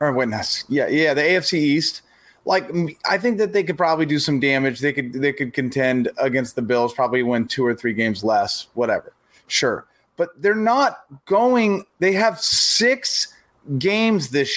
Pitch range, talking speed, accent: 130-180 Hz, 175 wpm, American